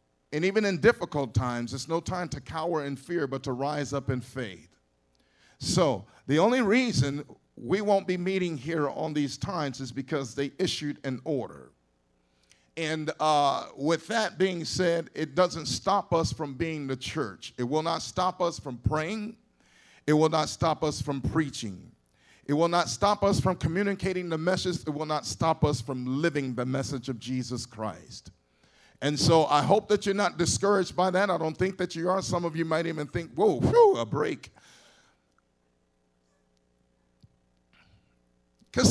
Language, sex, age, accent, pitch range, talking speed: English, male, 40-59, American, 125-170 Hz, 175 wpm